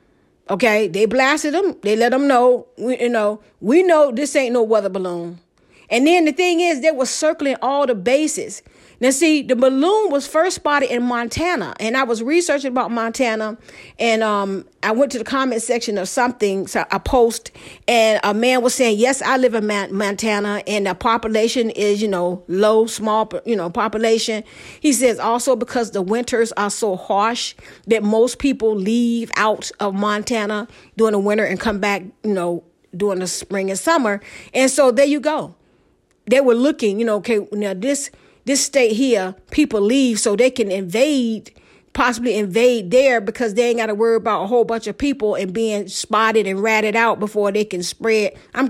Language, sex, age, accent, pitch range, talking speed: English, female, 40-59, American, 205-255 Hz, 190 wpm